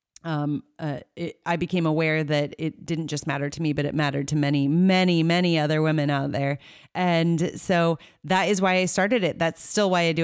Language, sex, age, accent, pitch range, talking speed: English, female, 30-49, American, 155-190 Hz, 210 wpm